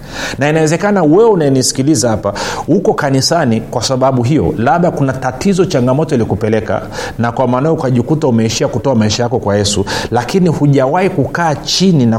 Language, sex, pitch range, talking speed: Swahili, male, 120-160 Hz, 150 wpm